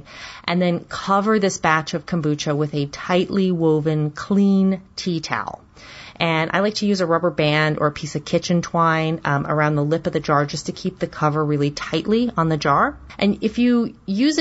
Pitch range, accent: 155-205 Hz, American